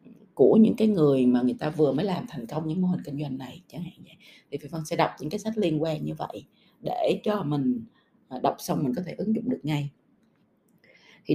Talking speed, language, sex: 245 wpm, Vietnamese, female